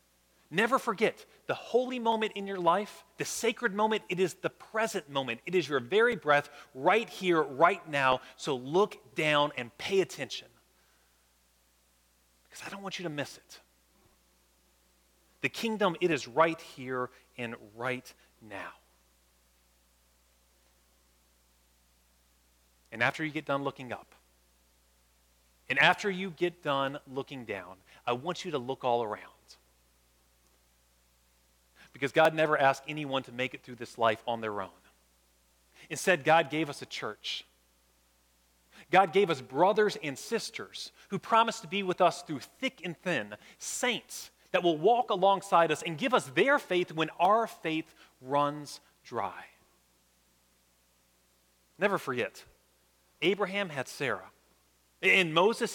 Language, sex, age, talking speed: English, male, 30-49, 140 wpm